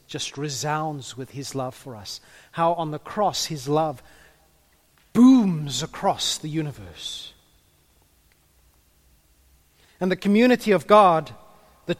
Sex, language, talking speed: male, English, 115 wpm